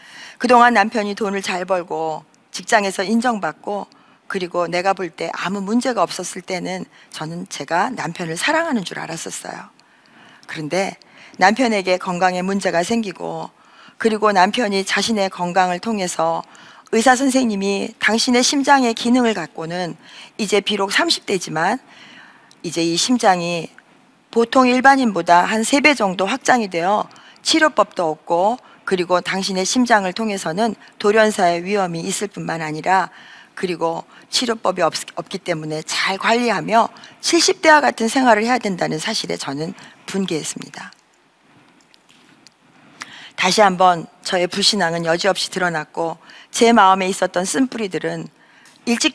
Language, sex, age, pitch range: Korean, female, 40-59, 175-230 Hz